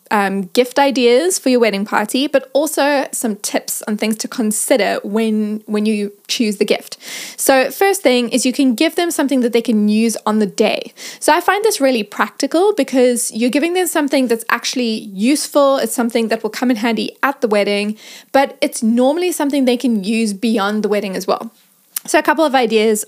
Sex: female